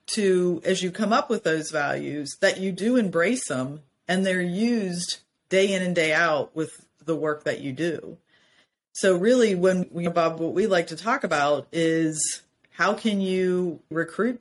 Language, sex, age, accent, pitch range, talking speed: English, female, 40-59, American, 160-195 Hz, 180 wpm